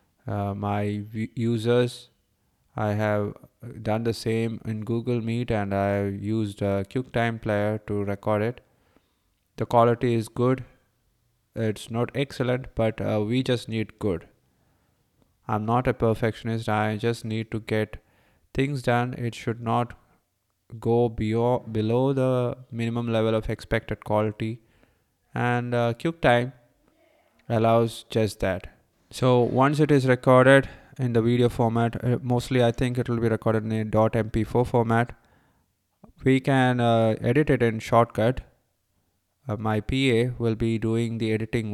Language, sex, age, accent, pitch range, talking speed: English, male, 20-39, Indian, 110-125 Hz, 140 wpm